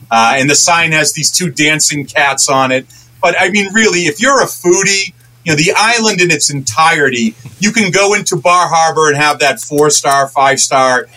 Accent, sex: American, male